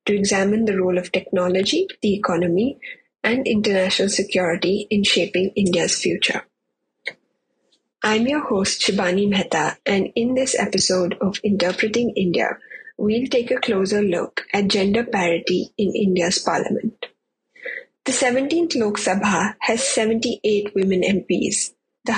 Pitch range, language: 190-230 Hz, English